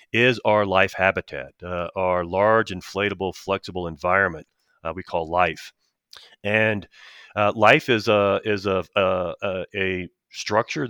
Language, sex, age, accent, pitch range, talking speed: English, male, 40-59, American, 90-105 Hz, 130 wpm